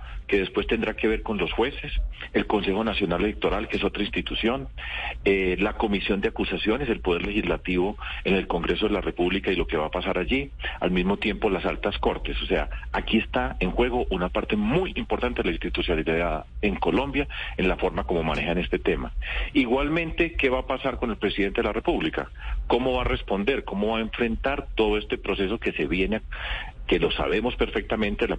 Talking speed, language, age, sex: 205 wpm, Spanish, 40-59, male